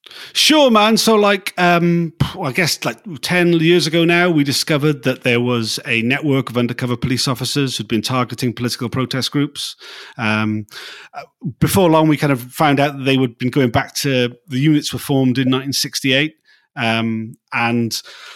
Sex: male